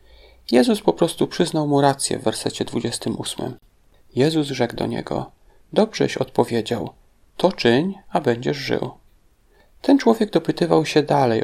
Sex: male